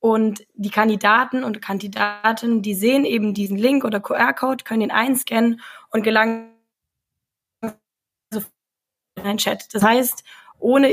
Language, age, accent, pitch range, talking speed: German, 20-39, German, 200-230 Hz, 130 wpm